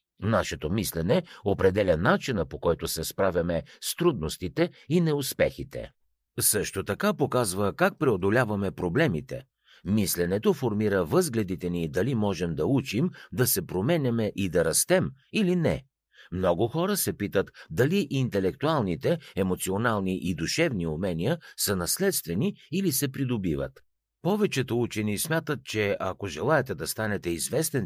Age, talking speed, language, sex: 50-69, 125 wpm, Bulgarian, male